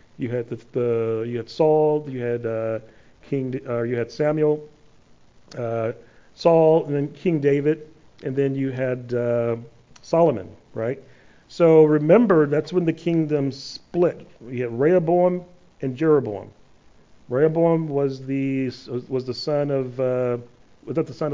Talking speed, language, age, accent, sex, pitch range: 145 wpm, English, 40-59, American, male, 130-180 Hz